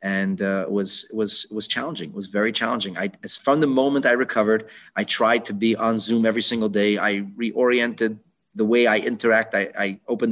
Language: English